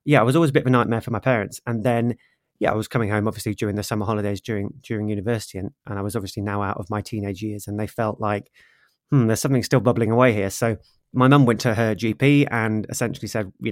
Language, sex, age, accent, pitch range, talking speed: English, male, 30-49, British, 105-125 Hz, 260 wpm